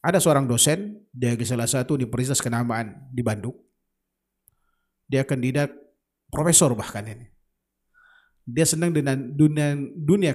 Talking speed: 120 wpm